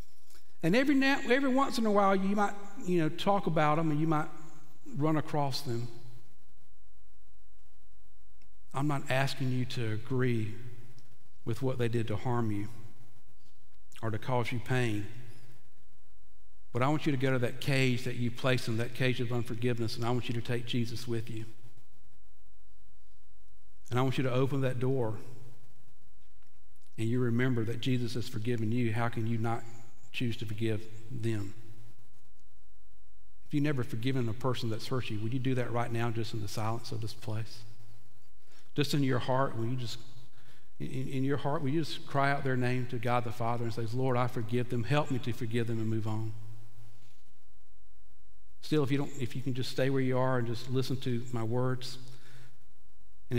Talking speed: 185 wpm